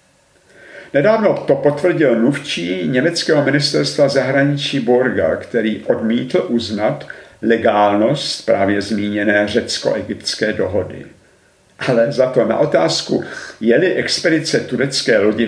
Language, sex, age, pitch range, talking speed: Czech, male, 50-69, 105-140 Hz, 95 wpm